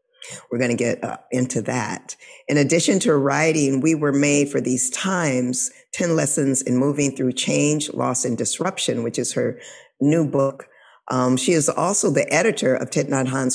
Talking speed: 175 wpm